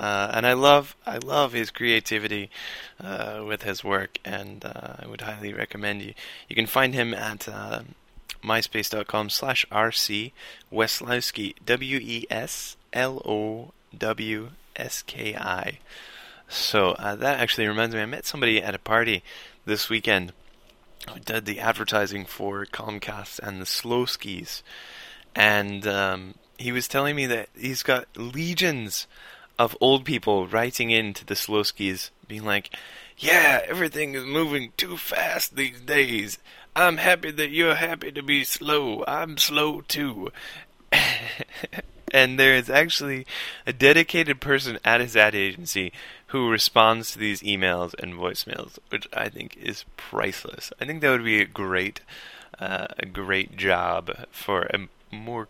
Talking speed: 145 wpm